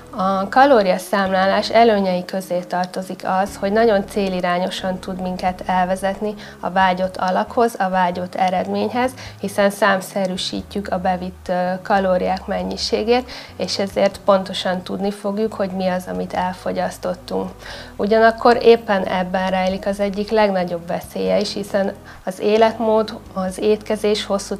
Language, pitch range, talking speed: Hungarian, 185-205 Hz, 120 wpm